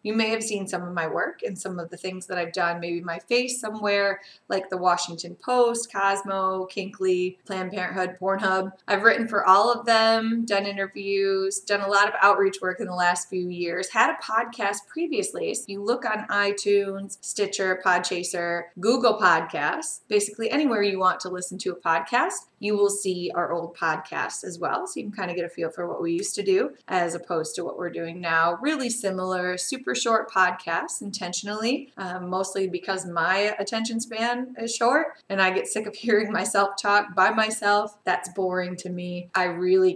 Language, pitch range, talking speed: English, 180-215 Hz, 195 wpm